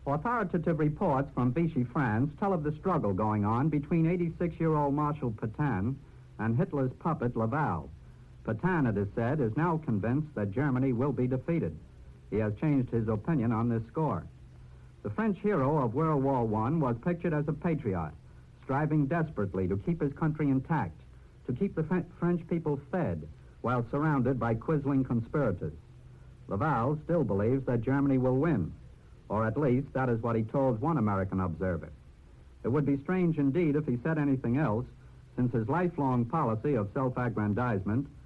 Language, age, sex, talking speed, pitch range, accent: English, 60-79, male, 160 wpm, 105-155 Hz, American